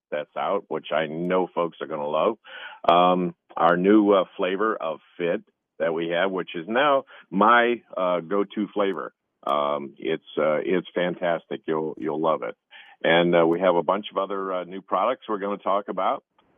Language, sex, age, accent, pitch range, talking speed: English, male, 50-69, American, 85-100 Hz, 190 wpm